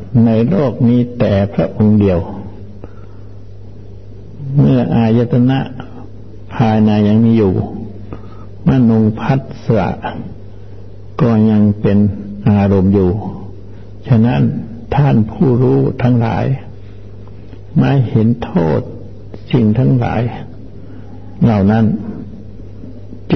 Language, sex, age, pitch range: Thai, male, 60-79, 100-115 Hz